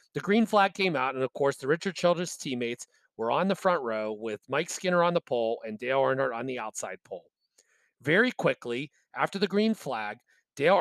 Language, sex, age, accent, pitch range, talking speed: English, male, 40-59, American, 125-185 Hz, 205 wpm